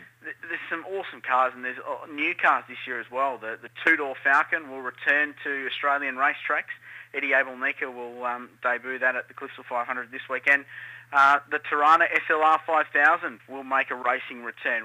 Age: 30-49